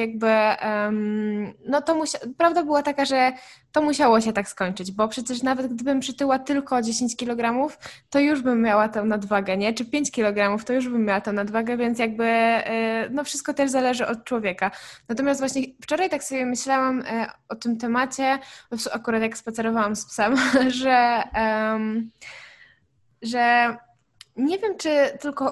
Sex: female